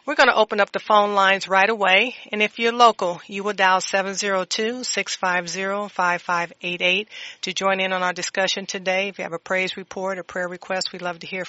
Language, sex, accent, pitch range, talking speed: English, female, American, 165-195 Hz, 200 wpm